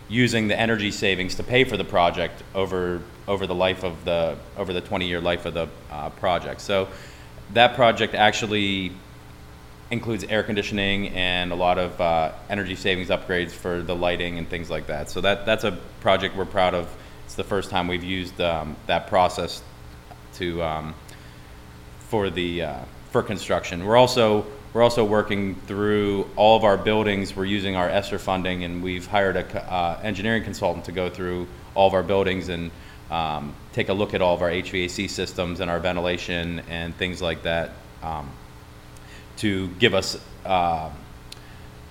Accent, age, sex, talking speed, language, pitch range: American, 30-49, male, 175 wpm, English, 80-100 Hz